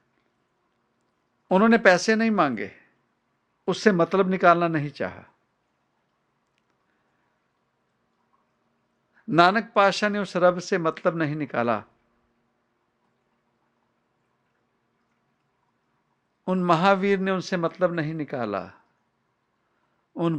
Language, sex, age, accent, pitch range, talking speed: English, male, 50-69, Indian, 140-195 Hz, 75 wpm